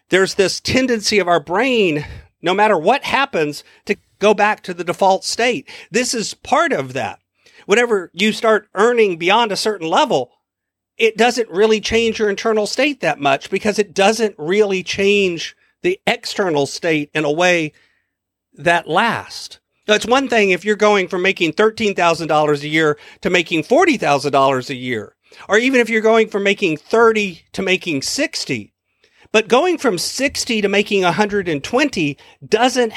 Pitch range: 165-220 Hz